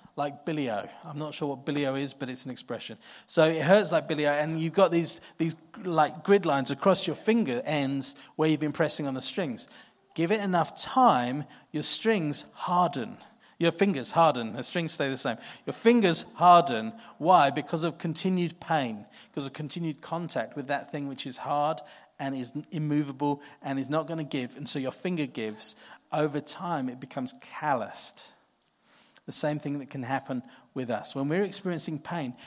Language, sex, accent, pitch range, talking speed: English, male, British, 145-180 Hz, 185 wpm